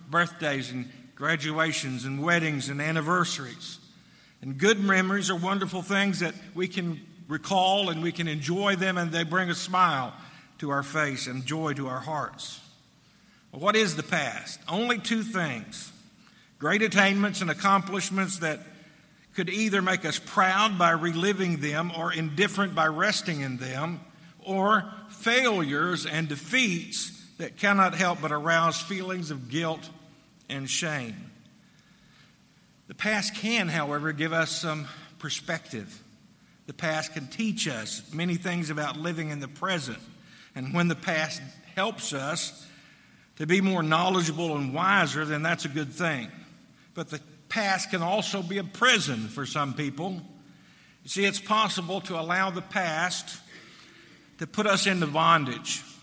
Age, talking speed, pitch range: 50-69, 145 wpm, 155-190 Hz